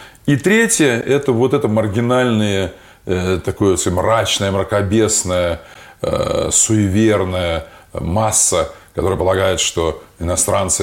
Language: Russian